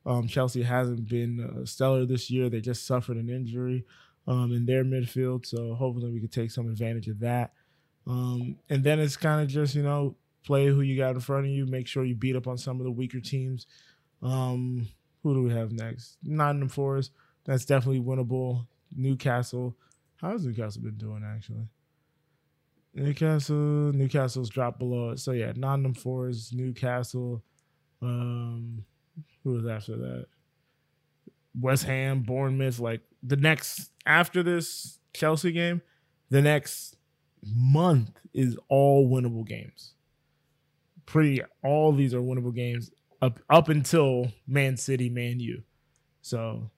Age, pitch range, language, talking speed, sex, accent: 20-39, 120-140 Hz, English, 150 wpm, male, American